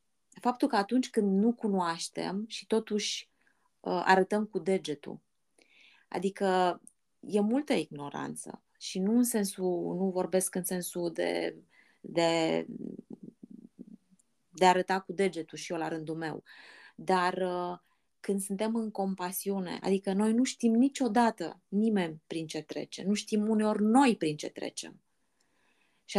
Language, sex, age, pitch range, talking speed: Romanian, female, 20-39, 185-225 Hz, 135 wpm